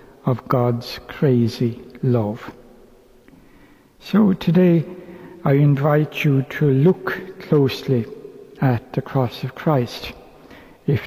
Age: 60-79